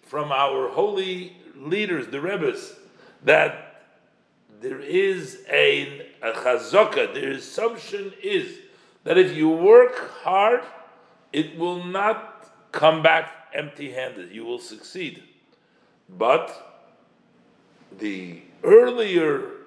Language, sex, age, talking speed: English, male, 50-69, 95 wpm